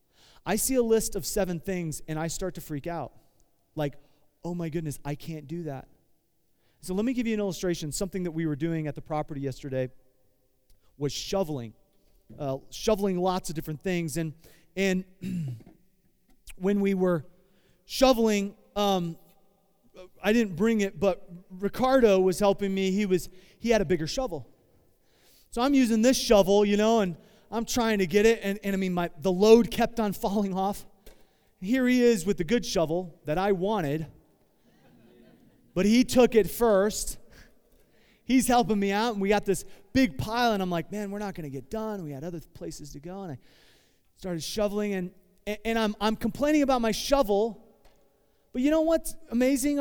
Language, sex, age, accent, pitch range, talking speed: English, male, 30-49, American, 165-220 Hz, 180 wpm